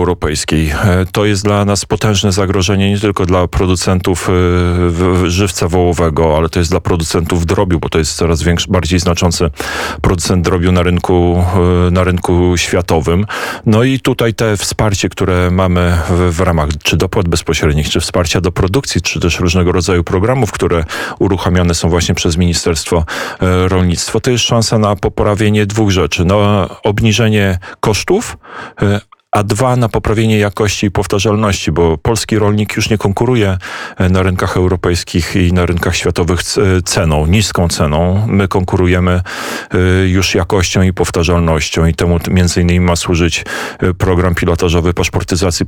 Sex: male